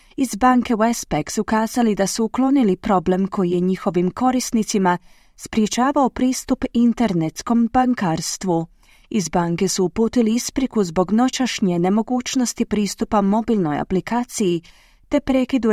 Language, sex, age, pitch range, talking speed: Croatian, female, 30-49, 185-245 Hz, 115 wpm